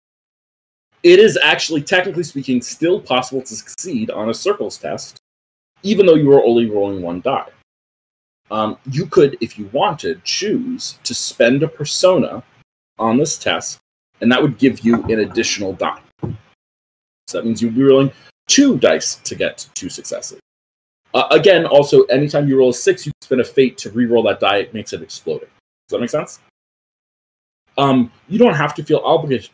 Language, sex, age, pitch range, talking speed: English, male, 30-49, 115-150 Hz, 175 wpm